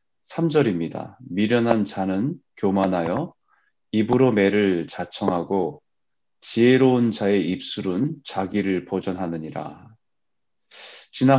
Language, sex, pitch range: Korean, male, 90-120 Hz